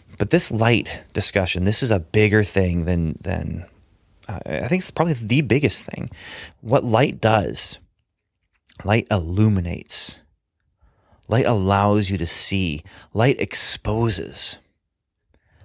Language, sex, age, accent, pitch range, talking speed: English, male, 30-49, American, 90-110 Hz, 120 wpm